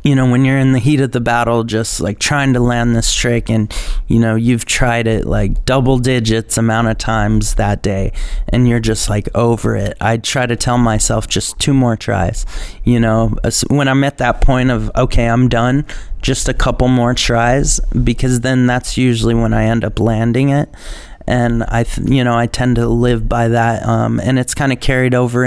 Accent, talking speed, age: American, 210 wpm, 30-49